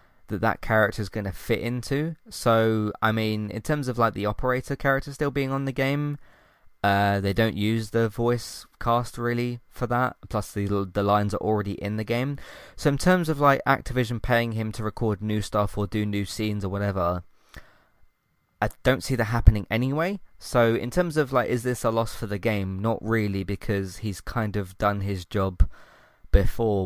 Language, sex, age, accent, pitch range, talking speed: English, male, 20-39, British, 95-120 Hz, 195 wpm